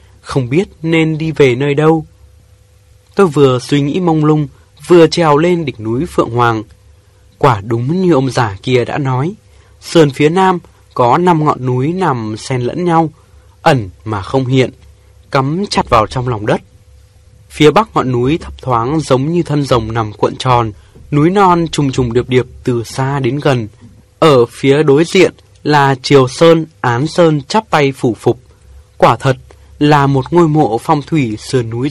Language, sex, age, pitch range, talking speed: Vietnamese, male, 20-39, 115-160 Hz, 180 wpm